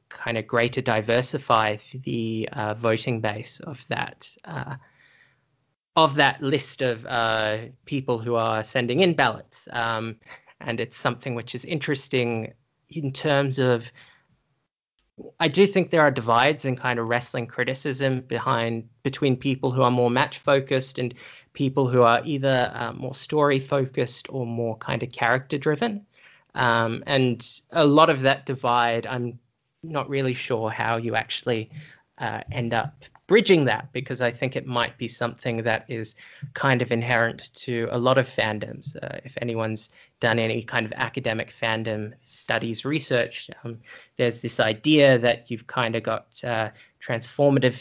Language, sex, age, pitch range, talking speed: English, male, 20-39, 115-135 Hz, 155 wpm